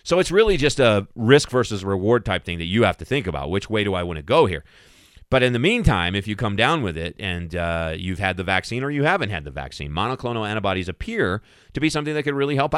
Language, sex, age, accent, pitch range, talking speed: English, male, 30-49, American, 95-120 Hz, 265 wpm